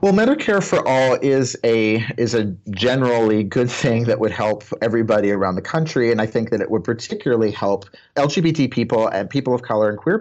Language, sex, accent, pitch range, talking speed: English, male, American, 95-115 Hz, 195 wpm